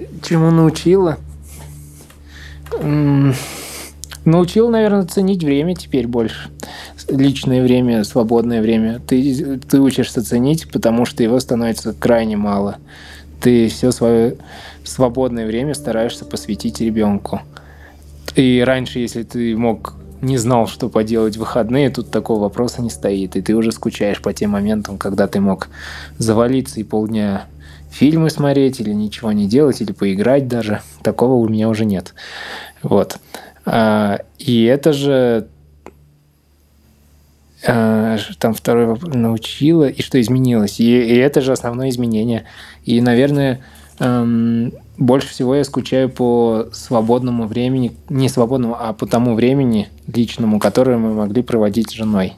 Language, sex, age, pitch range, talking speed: Russian, male, 20-39, 100-130 Hz, 125 wpm